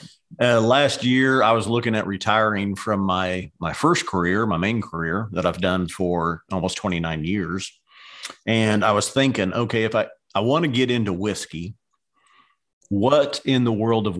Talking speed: 175 wpm